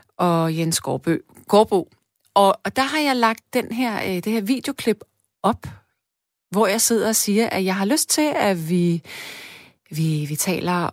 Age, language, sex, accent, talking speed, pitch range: 30-49, Danish, female, native, 150 wpm, 165-225 Hz